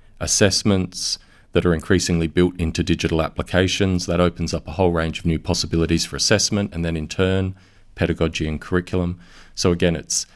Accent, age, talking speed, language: Australian, 40-59, 170 wpm, English